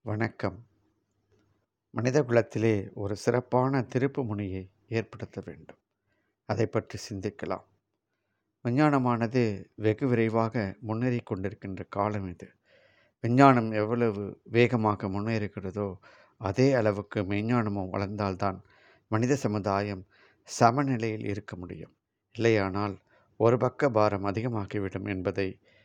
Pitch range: 100-120 Hz